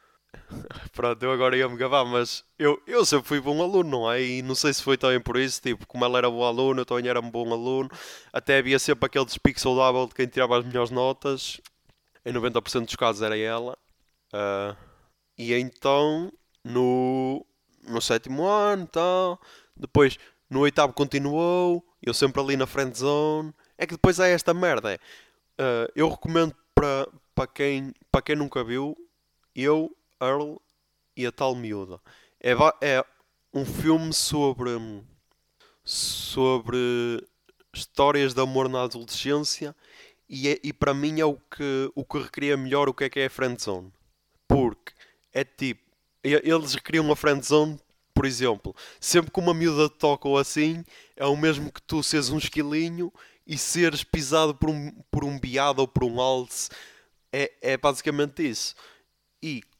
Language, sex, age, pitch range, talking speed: English, male, 20-39, 125-150 Hz, 165 wpm